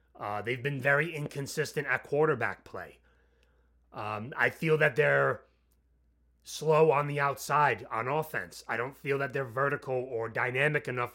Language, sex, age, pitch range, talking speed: English, male, 30-49, 105-140 Hz, 150 wpm